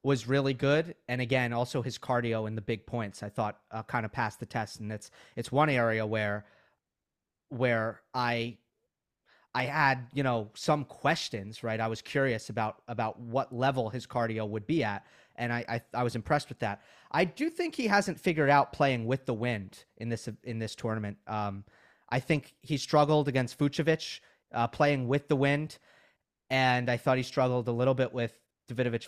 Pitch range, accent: 115-150 Hz, American